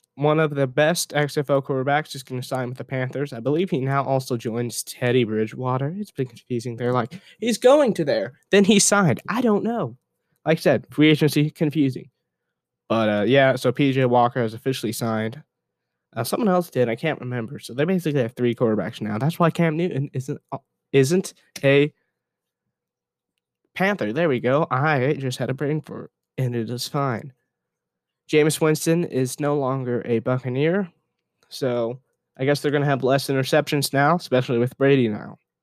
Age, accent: 10-29, American